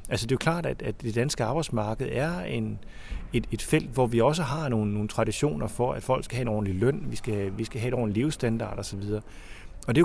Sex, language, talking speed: male, Danish, 250 wpm